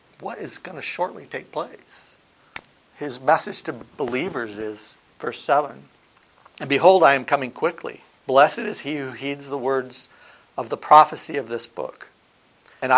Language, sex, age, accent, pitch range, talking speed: English, male, 60-79, American, 120-160 Hz, 155 wpm